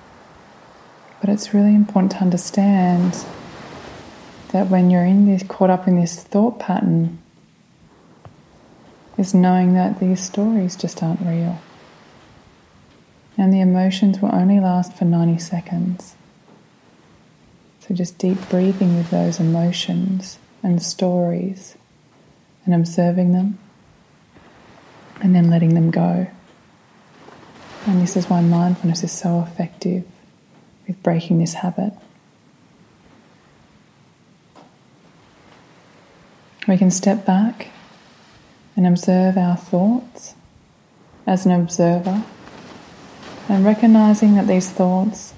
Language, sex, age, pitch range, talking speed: English, female, 20-39, 175-195 Hz, 105 wpm